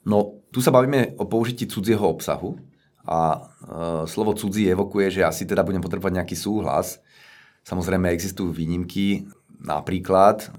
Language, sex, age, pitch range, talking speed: Slovak, male, 30-49, 80-95 Hz, 140 wpm